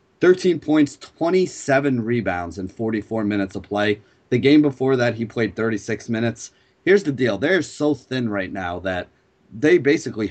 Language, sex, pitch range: English, male, 105-135 Hz